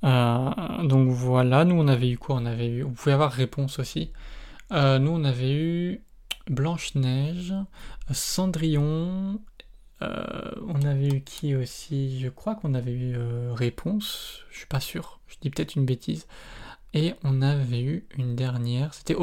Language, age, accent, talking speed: French, 20-39, French, 155 wpm